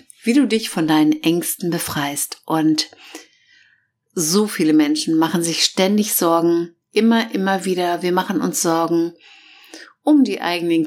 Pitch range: 165-210 Hz